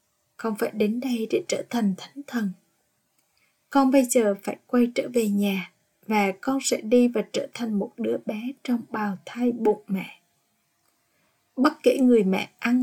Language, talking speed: Vietnamese, 175 wpm